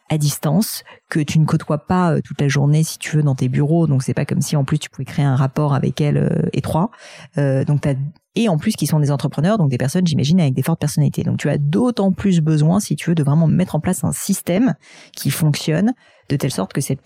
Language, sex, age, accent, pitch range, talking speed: French, female, 30-49, French, 140-170 Hz, 260 wpm